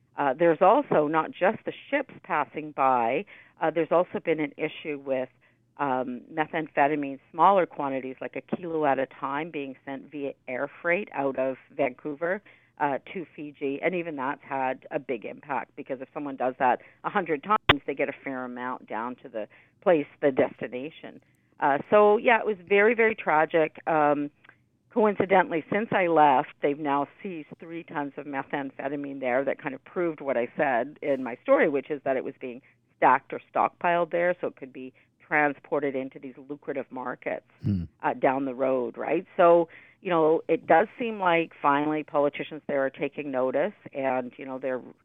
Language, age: English, 50-69